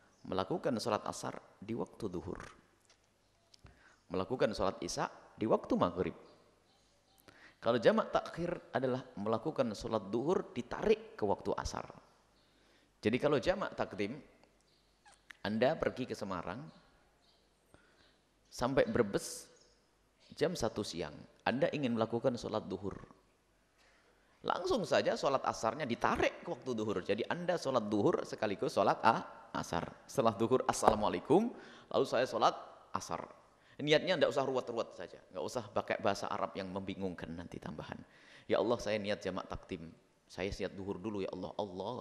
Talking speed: 130 wpm